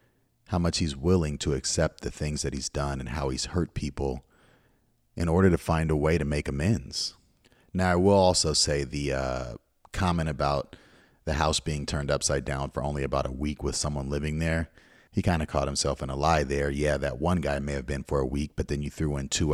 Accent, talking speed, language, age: American, 225 wpm, English, 30-49